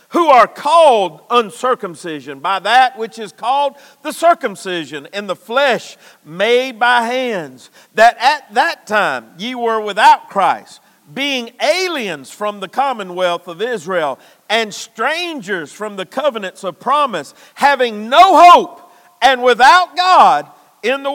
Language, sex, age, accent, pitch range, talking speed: English, male, 50-69, American, 220-300 Hz, 135 wpm